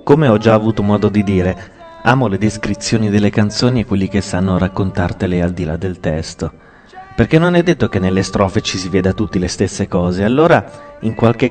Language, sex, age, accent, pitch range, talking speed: Italian, male, 30-49, native, 95-125 Hz, 205 wpm